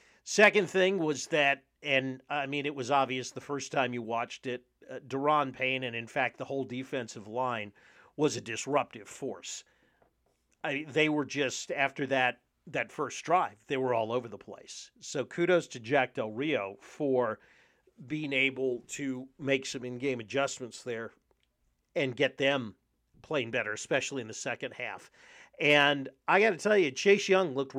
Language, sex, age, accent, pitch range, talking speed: English, male, 40-59, American, 125-155 Hz, 170 wpm